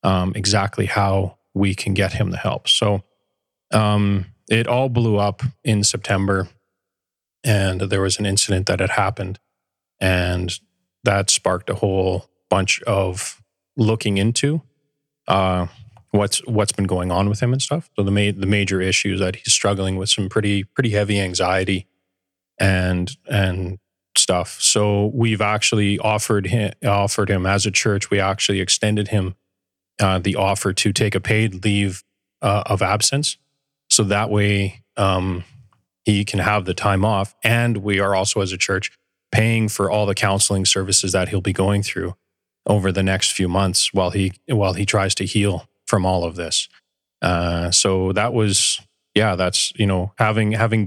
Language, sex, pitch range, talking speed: English, male, 95-105 Hz, 170 wpm